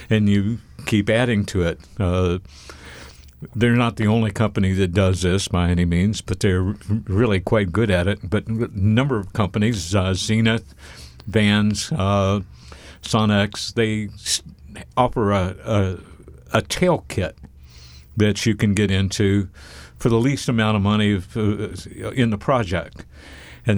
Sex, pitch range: male, 90-110 Hz